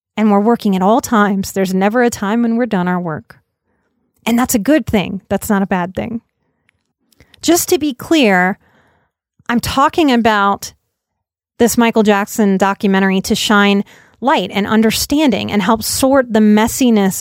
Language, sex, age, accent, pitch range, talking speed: English, female, 30-49, American, 200-240 Hz, 160 wpm